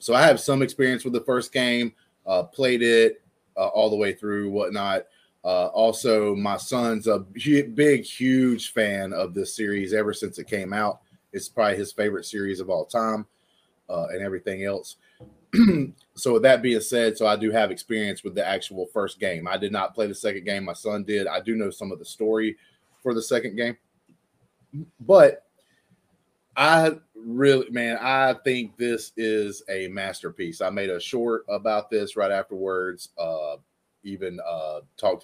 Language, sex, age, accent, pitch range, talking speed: English, male, 30-49, American, 105-120 Hz, 180 wpm